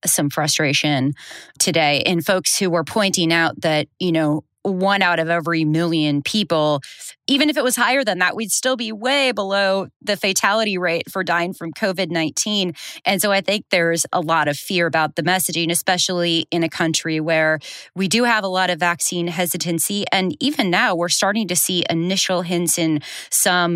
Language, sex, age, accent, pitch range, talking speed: English, female, 30-49, American, 165-195 Hz, 185 wpm